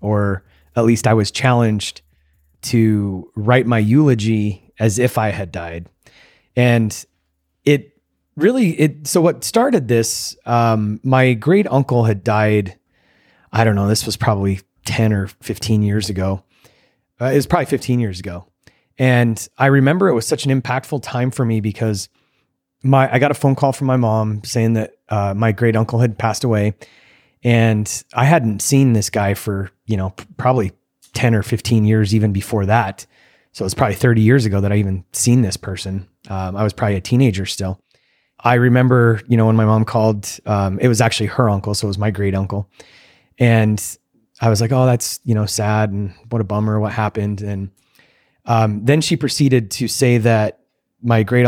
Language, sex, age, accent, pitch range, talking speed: English, male, 30-49, American, 100-125 Hz, 185 wpm